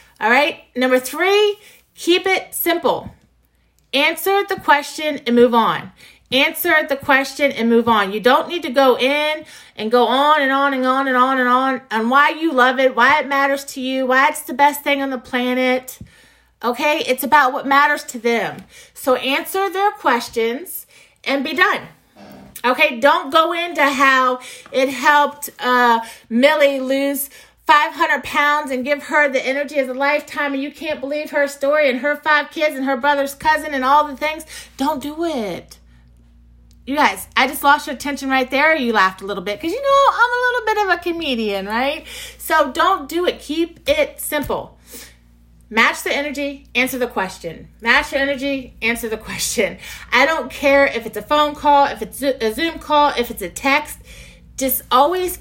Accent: American